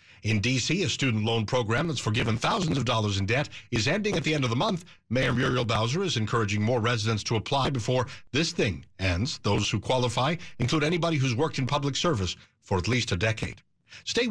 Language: English